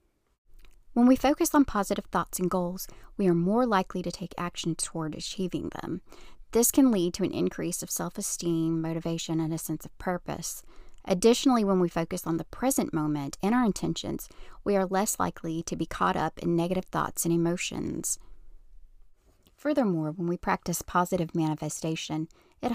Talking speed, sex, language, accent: 165 wpm, female, English, American